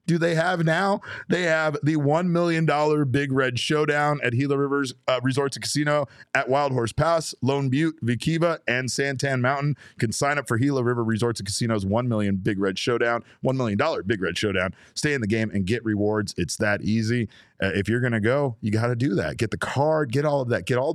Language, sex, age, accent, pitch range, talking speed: English, male, 30-49, American, 110-140 Hz, 225 wpm